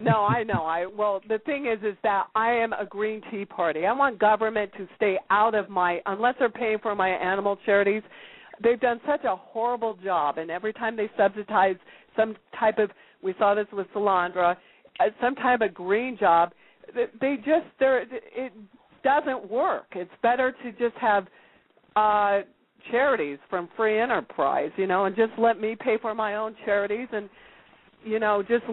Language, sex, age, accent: English, female, 50-69, American